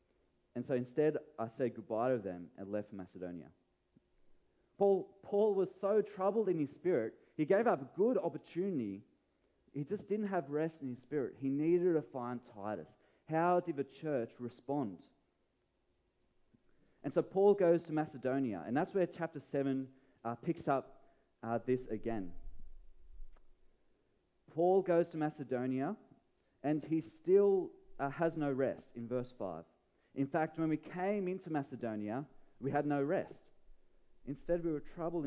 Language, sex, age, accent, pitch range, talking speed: English, male, 30-49, Australian, 120-165 Hz, 150 wpm